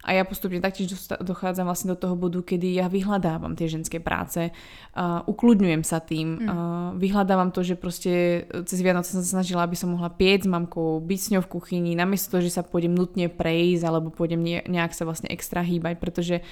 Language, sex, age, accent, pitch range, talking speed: Czech, female, 20-39, native, 175-195 Hz, 200 wpm